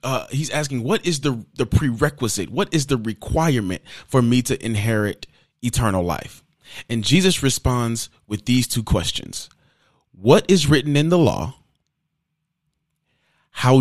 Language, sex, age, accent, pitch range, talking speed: English, male, 30-49, American, 110-150 Hz, 140 wpm